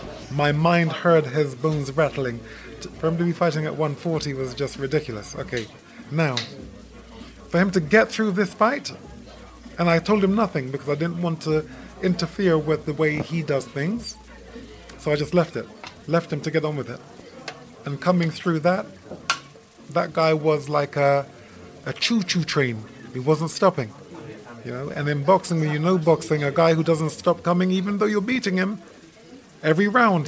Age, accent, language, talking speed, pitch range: 30-49, British, English, 180 wpm, 140-185 Hz